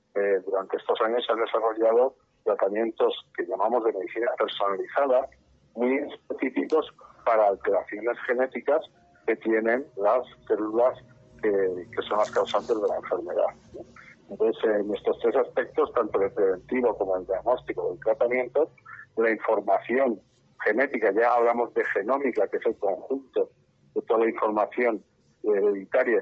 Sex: male